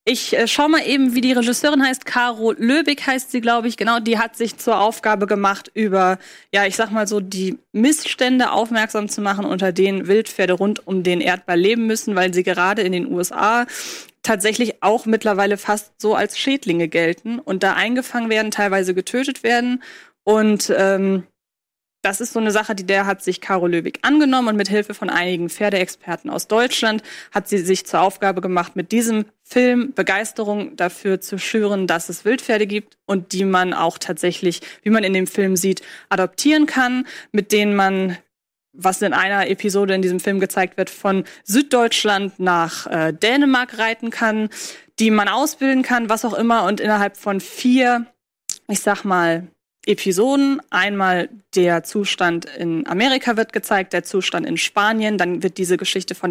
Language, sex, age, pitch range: German, female, 20-39, 180-225 Hz